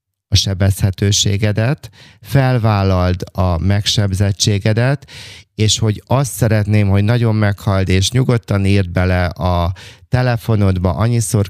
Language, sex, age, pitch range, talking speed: Hungarian, male, 30-49, 95-115 Hz, 100 wpm